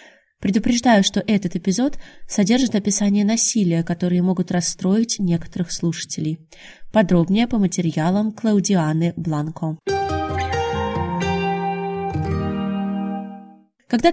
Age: 20-39